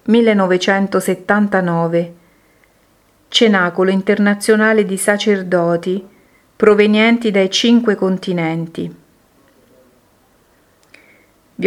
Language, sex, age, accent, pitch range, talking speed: Italian, female, 40-59, native, 175-205 Hz, 50 wpm